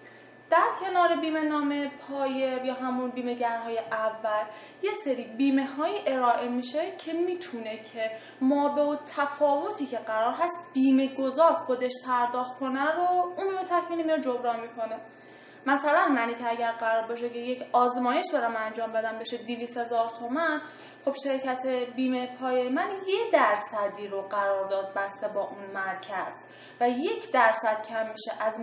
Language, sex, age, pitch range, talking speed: Persian, female, 10-29, 235-310 Hz, 155 wpm